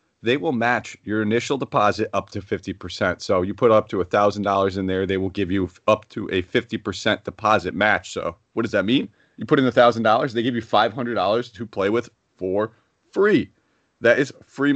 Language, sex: English, male